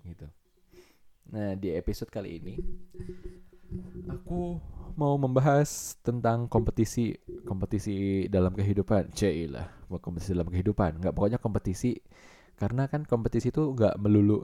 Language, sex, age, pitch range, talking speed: Indonesian, male, 20-39, 95-115 Hz, 105 wpm